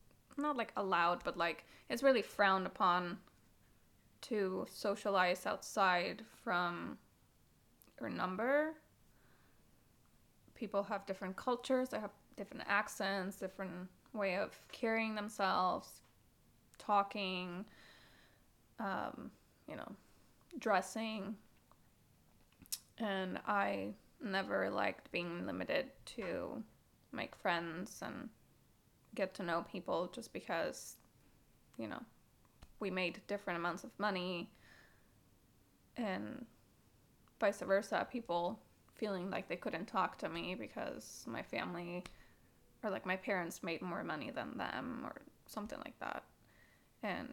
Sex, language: female, English